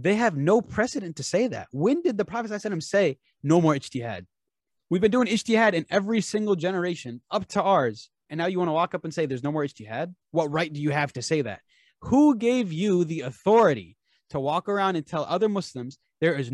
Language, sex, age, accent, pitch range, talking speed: English, male, 30-49, American, 135-210 Hz, 225 wpm